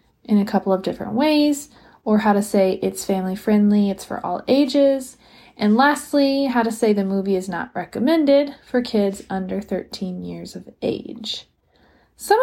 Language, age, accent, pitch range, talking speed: English, 30-49, American, 195-250 Hz, 170 wpm